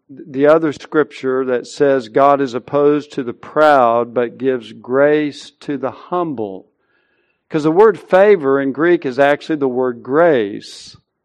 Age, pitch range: 50-69, 130-160 Hz